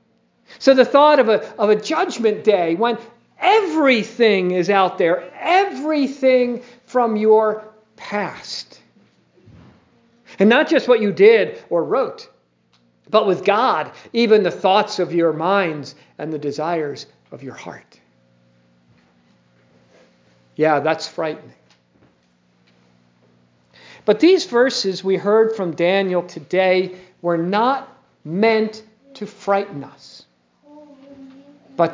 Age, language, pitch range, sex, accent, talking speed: 50-69, English, 165-245 Hz, male, American, 110 wpm